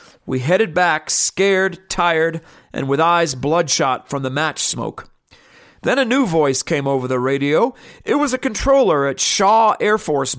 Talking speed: 170 wpm